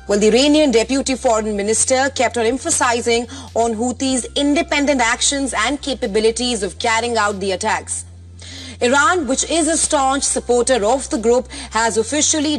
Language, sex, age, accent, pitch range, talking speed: English, female, 30-49, Indian, 210-265 Hz, 150 wpm